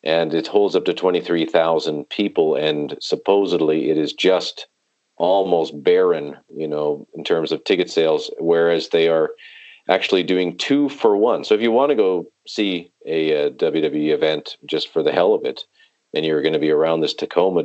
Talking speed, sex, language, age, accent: 185 wpm, male, English, 40-59, American